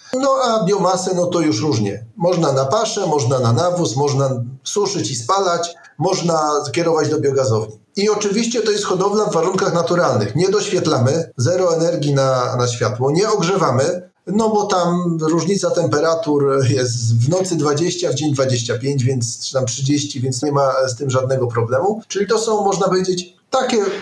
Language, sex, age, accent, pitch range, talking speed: Polish, male, 40-59, native, 135-185 Hz, 165 wpm